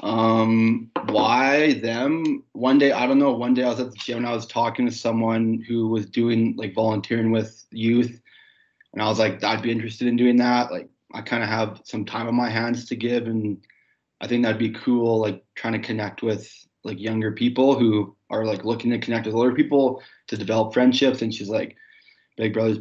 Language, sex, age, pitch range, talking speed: English, male, 20-39, 110-125 Hz, 210 wpm